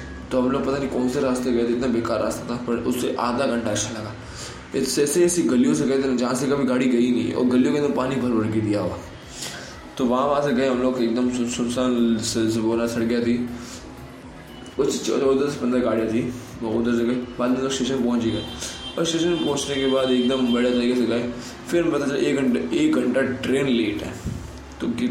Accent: native